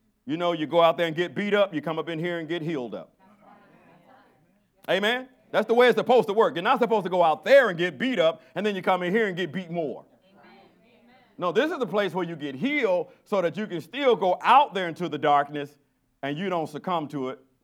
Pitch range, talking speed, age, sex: 125-190 Hz, 250 wpm, 40-59, male